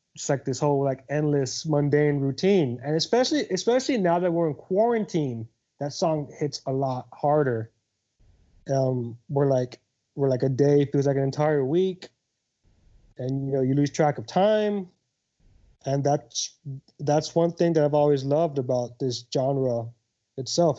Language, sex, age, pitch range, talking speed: English, male, 30-49, 125-155 Hz, 160 wpm